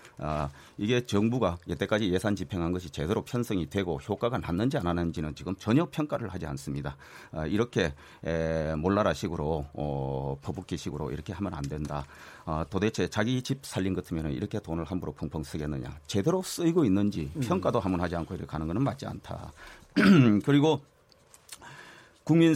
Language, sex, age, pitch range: Korean, male, 40-59, 80-120 Hz